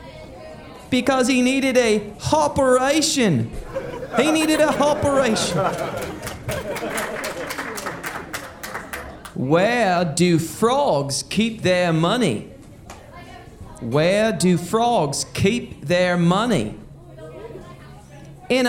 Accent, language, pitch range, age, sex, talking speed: American, English, 170-255 Hz, 30-49, male, 70 wpm